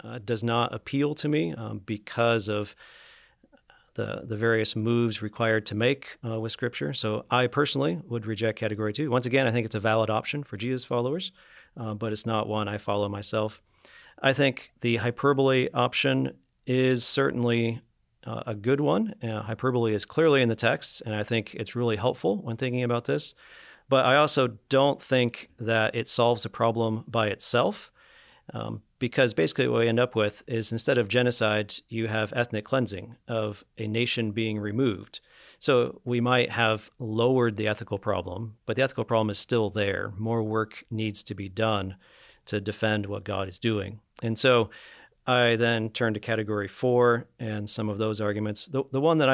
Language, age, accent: English, 40-59, American